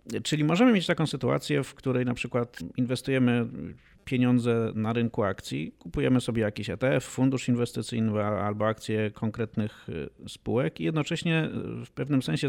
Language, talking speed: Polish, 140 wpm